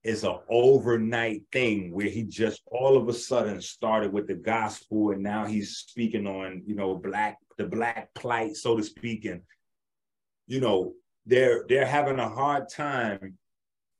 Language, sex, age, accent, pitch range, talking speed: English, male, 30-49, American, 95-115 Hz, 165 wpm